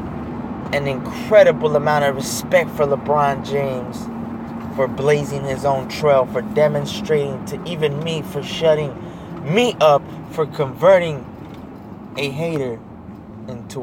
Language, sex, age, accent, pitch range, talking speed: English, male, 20-39, American, 105-140 Hz, 115 wpm